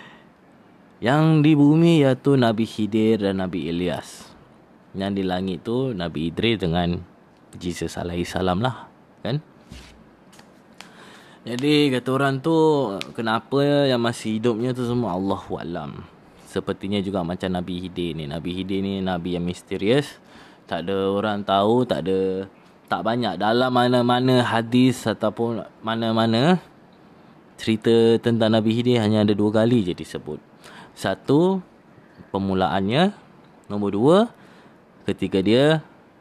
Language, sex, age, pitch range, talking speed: Malay, male, 20-39, 95-120 Hz, 120 wpm